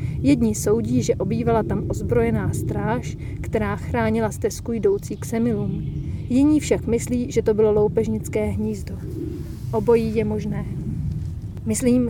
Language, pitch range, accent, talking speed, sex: Czech, 205-245 Hz, native, 125 wpm, female